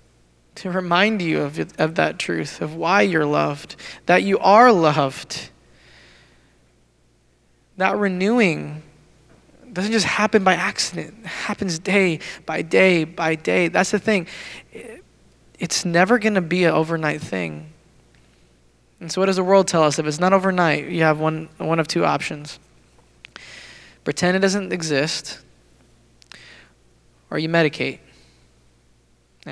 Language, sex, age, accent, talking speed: English, male, 20-39, American, 135 wpm